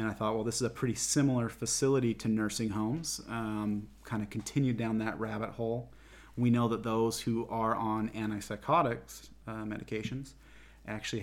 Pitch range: 105-115 Hz